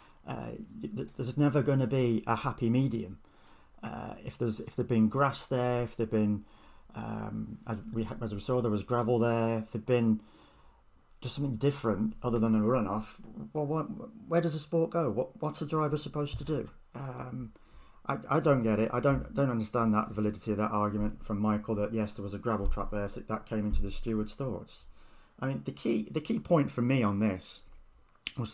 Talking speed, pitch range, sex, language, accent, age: 200 wpm, 105-130 Hz, male, English, British, 40-59